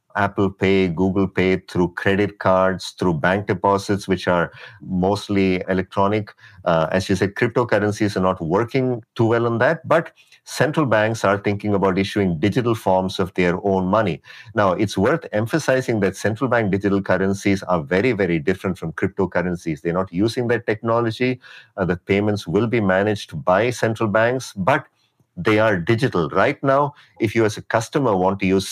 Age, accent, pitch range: 50-69, Indian, 95-115 Hz